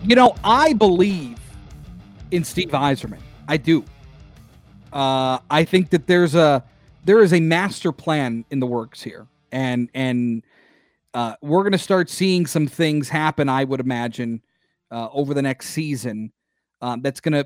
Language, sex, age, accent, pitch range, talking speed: English, male, 40-59, American, 125-175 Hz, 155 wpm